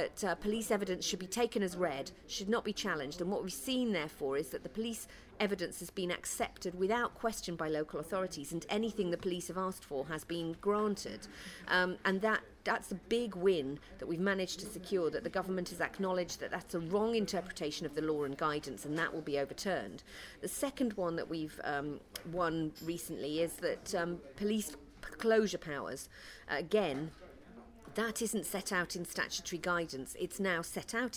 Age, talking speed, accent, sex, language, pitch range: 40-59, 195 wpm, British, female, English, 165-205 Hz